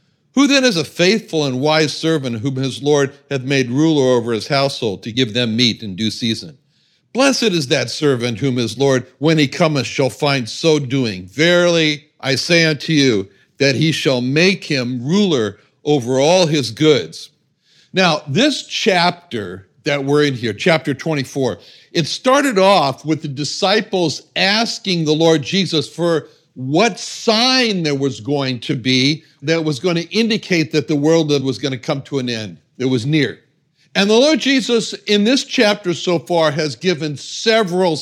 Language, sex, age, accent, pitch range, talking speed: English, male, 60-79, American, 130-180 Hz, 175 wpm